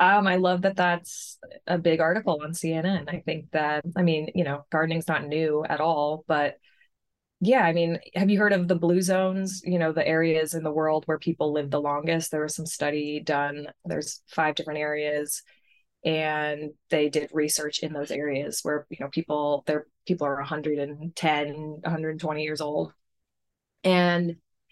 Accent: American